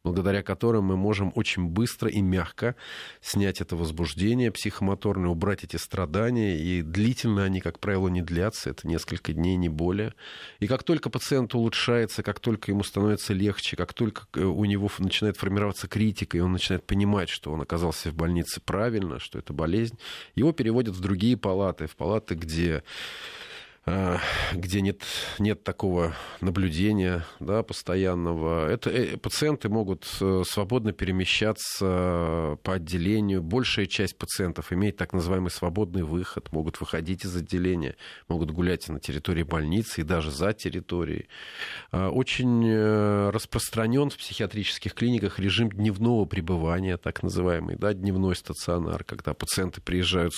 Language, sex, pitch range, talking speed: Russian, male, 85-105 Hz, 135 wpm